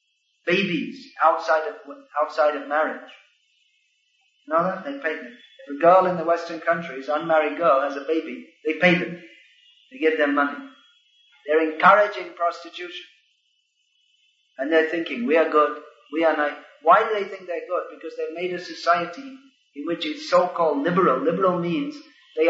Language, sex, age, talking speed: English, male, 40-59, 170 wpm